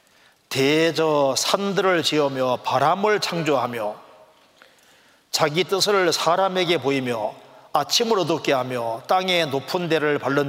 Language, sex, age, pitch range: Korean, male, 40-59, 140-195 Hz